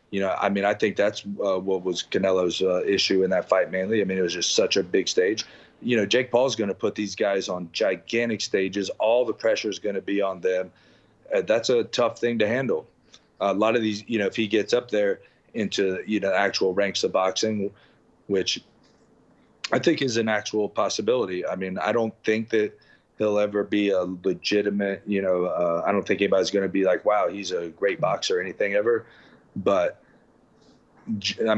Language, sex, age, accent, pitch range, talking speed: English, male, 30-49, American, 95-115 Hz, 215 wpm